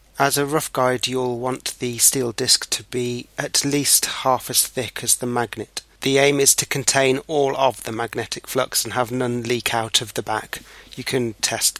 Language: English